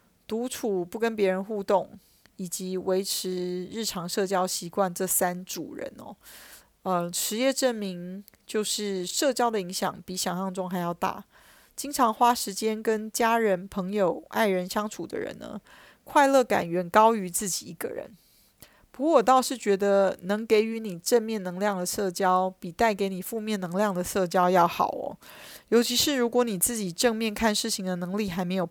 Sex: female